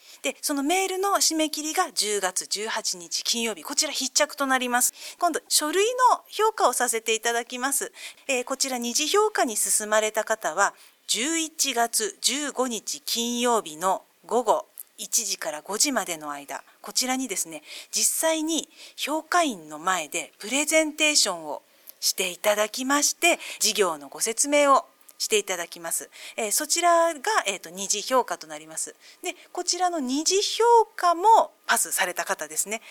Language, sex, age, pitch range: Japanese, female, 40-59, 210-335 Hz